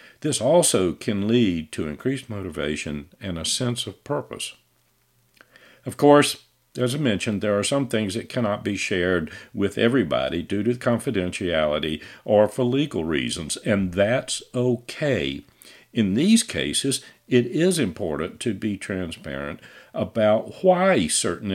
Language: English